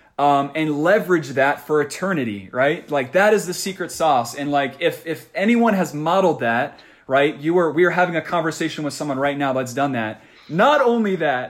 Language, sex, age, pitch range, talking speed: English, male, 20-39, 135-170 Hz, 205 wpm